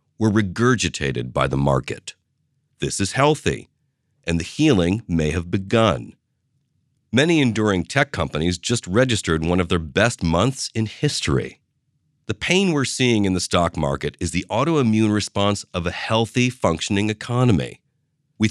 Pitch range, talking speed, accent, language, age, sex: 90-125 Hz, 145 wpm, American, English, 40-59, male